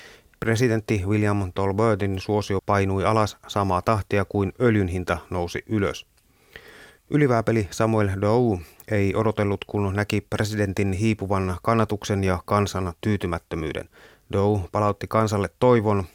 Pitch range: 95-110 Hz